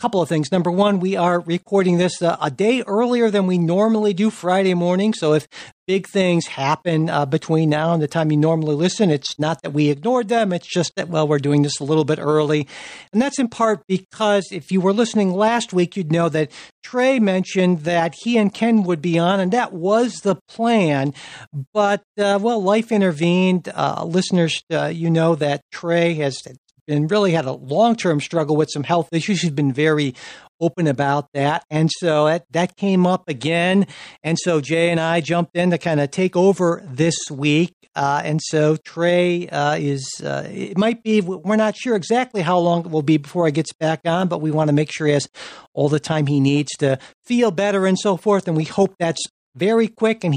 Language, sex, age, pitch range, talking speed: English, male, 50-69, 155-195 Hz, 210 wpm